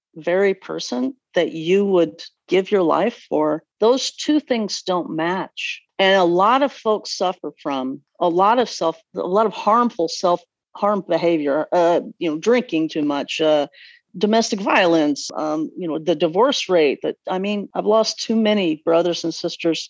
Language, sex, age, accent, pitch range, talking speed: English, female, 50-69, American, 170-230 Hz, 170 wpm